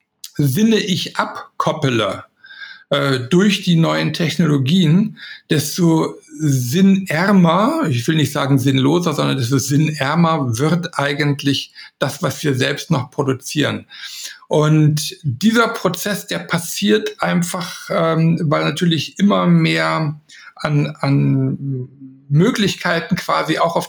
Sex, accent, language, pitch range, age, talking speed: male, German, German, 140-180 Hz, 60-79, 110 wpm